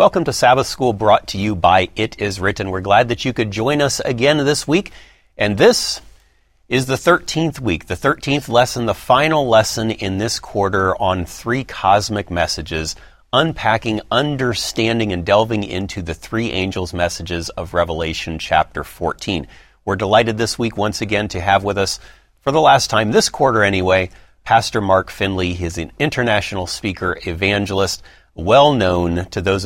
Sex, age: male, 40-59